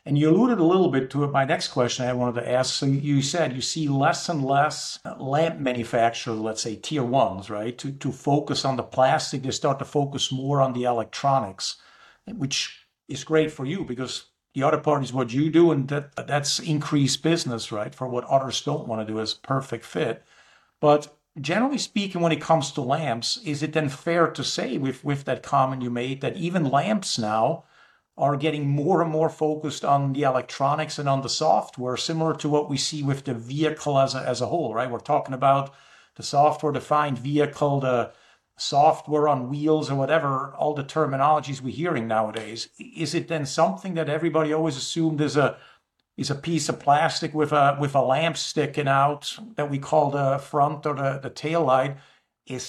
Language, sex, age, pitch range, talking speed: English, male, 50-69, 130-155 Hz, 200 wpm